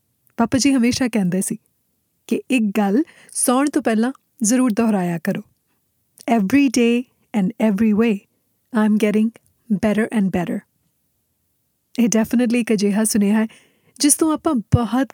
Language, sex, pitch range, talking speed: Punjabi, female, 205-245 Hz, 125 wpm